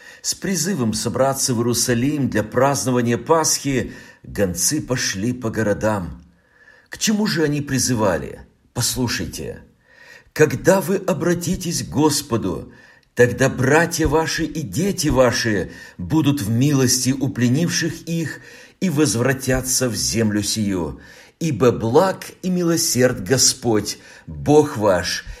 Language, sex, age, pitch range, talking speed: Russian, male, 50-69, 110-155 Hz, 110 wpm